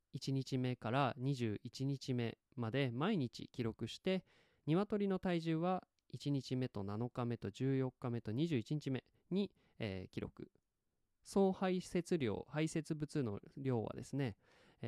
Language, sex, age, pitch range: Japanese, male, 20-39, 110-165 Hz